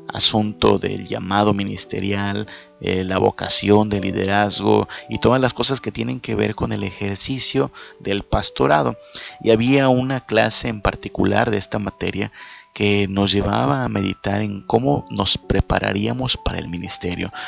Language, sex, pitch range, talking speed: Spanish, male, 100-120 Hz, 150 wpm